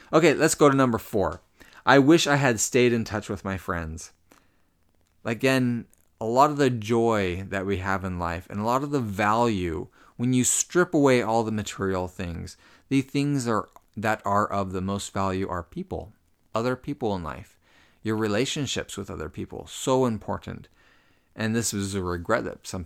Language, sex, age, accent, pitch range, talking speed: English, male, 30-49, American, 95-125 Hz, 180 wpm